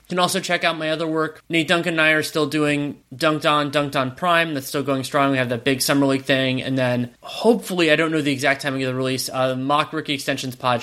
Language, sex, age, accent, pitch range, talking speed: English, male, 20-39, American, 135-160 Hz, 265 wpm